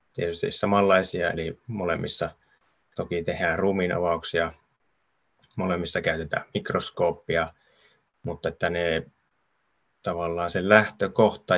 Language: Finnish